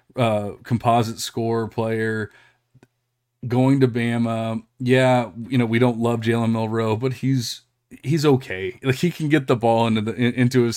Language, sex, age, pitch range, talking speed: English, male, 30-49, 110-125 Hz, 160 wpm